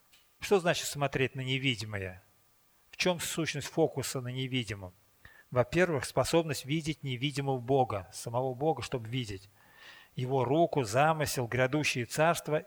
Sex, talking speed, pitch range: male, 120 wpm, 115-145 Hz